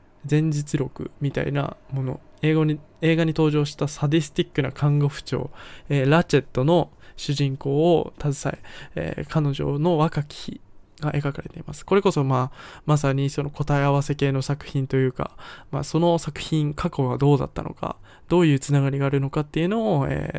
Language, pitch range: Japanese, 135-155 Hz